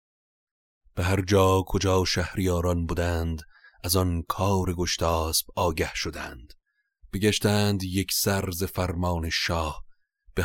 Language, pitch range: Persian, 85-95 Hz